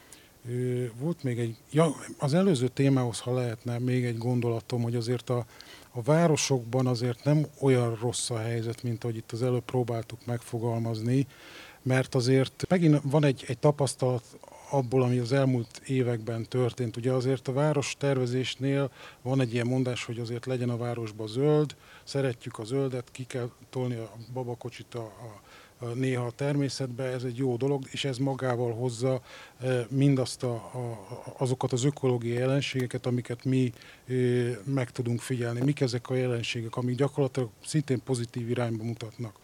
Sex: male